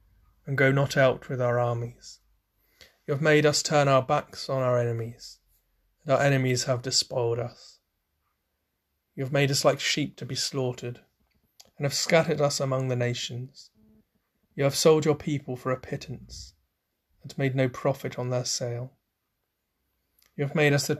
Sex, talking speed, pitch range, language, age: male, 170 wpm, 120-145 Hz, English, 30-49